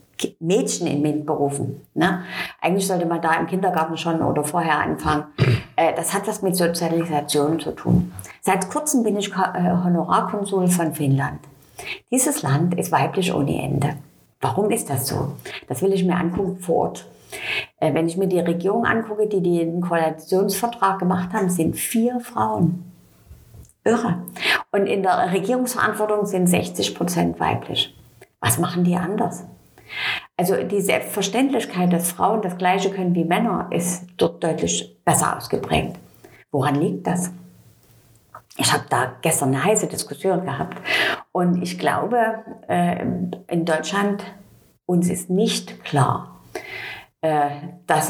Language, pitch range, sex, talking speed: German, 155-195 Hz, female, 135 wpm